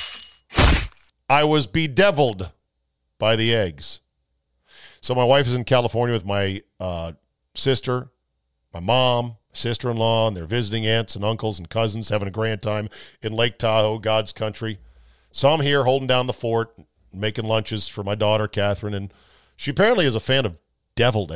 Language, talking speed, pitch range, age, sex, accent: English, 160 wpm, 100-125 Hz, 50-69, male, American